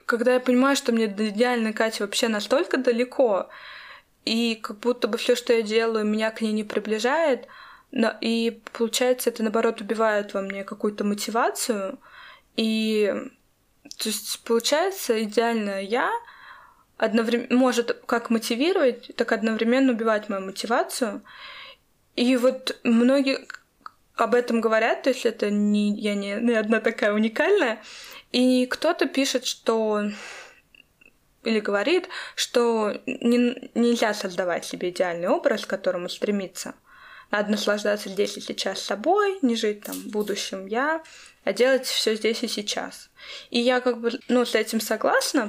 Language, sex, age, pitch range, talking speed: Russian, female, 20-39, 215-255 Hz, 140 wpm